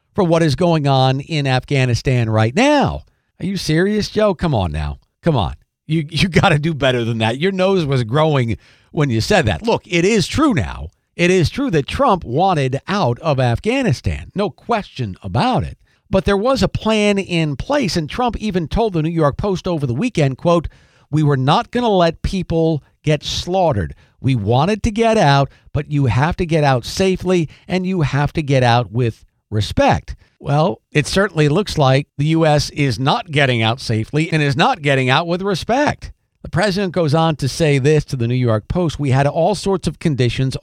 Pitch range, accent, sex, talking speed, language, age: 130-180 Hz, American, male, 200 wpm, English, 50-69